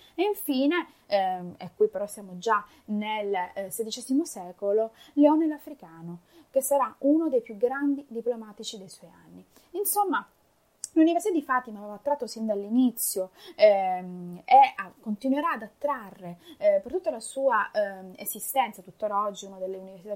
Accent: native